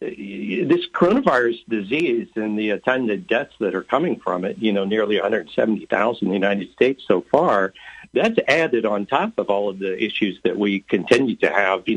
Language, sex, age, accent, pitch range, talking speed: English, male, 60-79, American, 105-125 Hz, 185 wpm